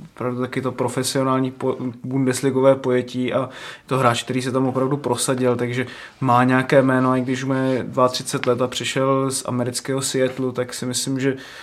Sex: male